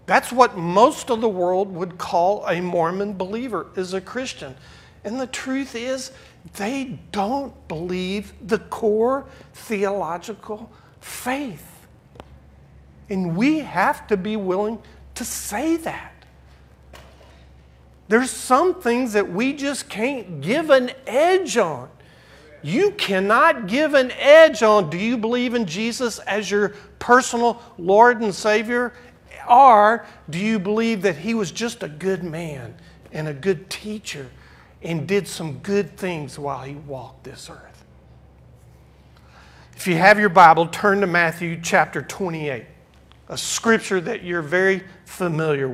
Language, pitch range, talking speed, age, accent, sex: English, 145-225 Hz, 135 wpm, 50-69, American, male